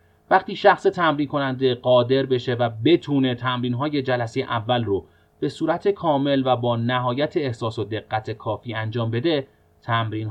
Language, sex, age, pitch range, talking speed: Persian, male, 30-49, 110-150 Hz, 150 wpm